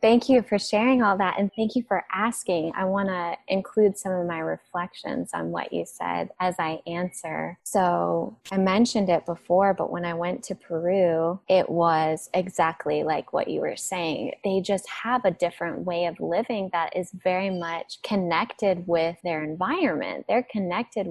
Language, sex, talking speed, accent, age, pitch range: English, female, 180 wpm, American, 20-39, 185-225 Hz